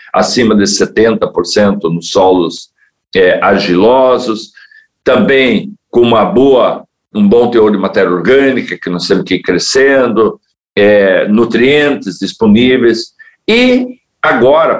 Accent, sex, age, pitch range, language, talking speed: Brazilian, male, 60-79, 105-140 Hz, Portuguese, 115 wpm